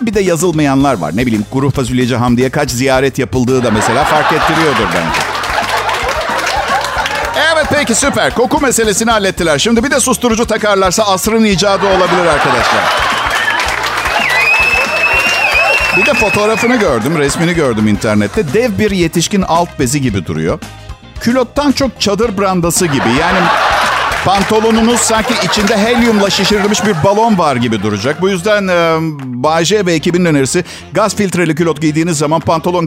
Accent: native